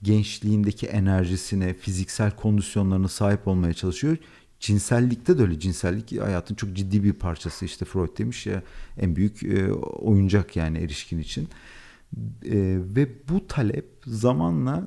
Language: Turkish